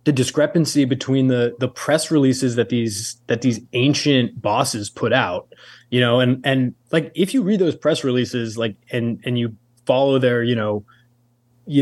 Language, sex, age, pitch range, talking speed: English, male, 20-39, 115-140 Hz, 180 wpm